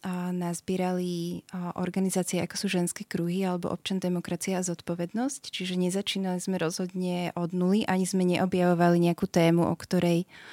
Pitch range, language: 180-195 Hz, Slovak